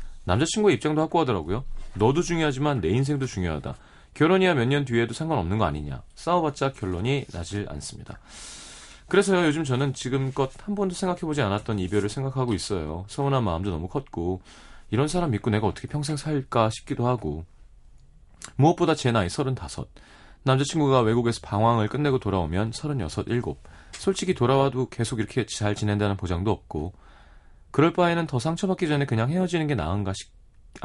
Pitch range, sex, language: 100-145 Hz, male, Korean